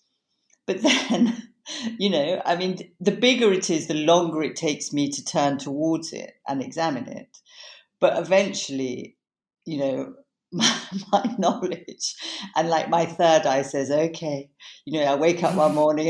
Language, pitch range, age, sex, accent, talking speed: English, 135-170 Hz, 50-69, female, British, 160 wpm